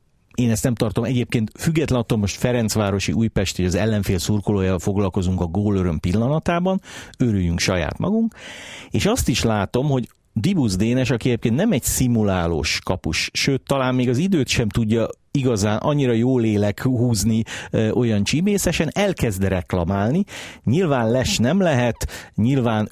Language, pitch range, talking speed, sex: Hungarian, 100-130 Hz, 140 wpm, male